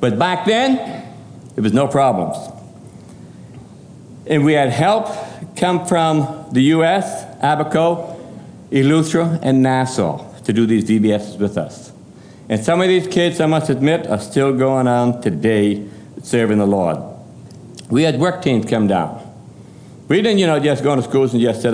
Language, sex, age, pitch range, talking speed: English, male, 60-79, 120-165 Hz, 160 wpm